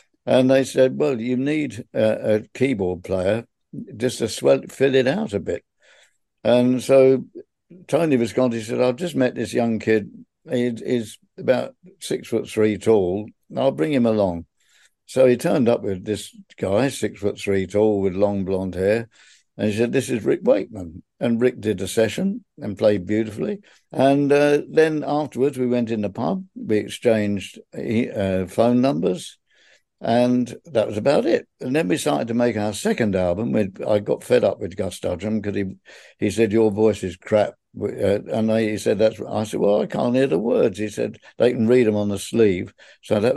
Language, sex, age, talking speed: English, male, 60-79, 190 wpm